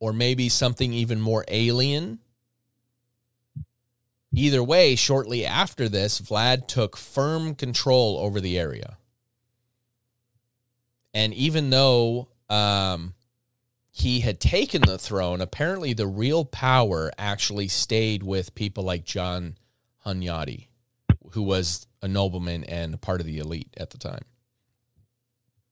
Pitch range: 105-125 Hz